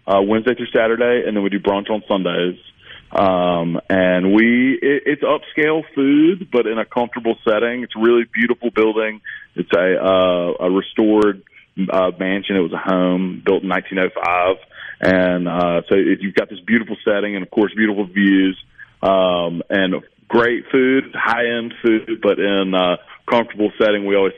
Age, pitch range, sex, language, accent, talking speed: 30-49, 90-110 Hz, male, English, American, 165 wpm